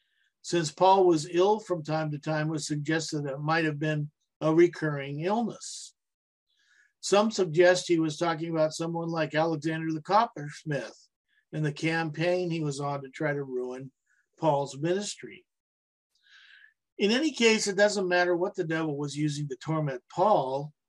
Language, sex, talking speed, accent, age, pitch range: English, male, 160 wpm, American, 50-69, 150-185 Hz